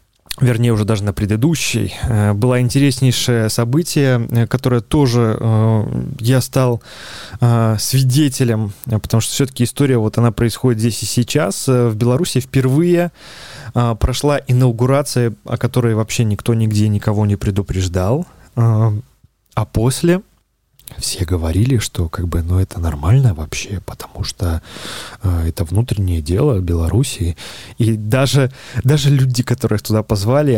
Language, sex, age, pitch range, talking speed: Russian, male, 20-39, 105-130 Hz, 115 wpm